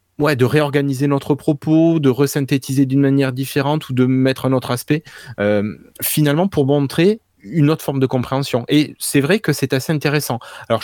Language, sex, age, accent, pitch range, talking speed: French, male, 20-39, French, 115-140 Hz, 185 wpm